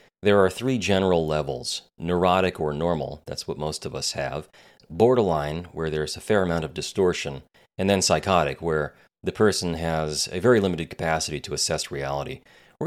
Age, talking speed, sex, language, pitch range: 30-49, 175 wpm, male, English, 75-100 Hz